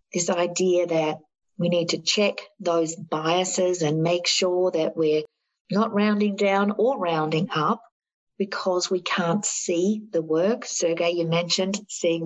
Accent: Australian